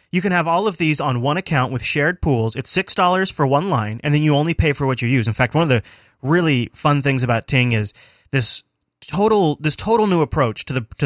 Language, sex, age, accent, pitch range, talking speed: English, male, 30-49, American, 120-155 Hz, 250 wpm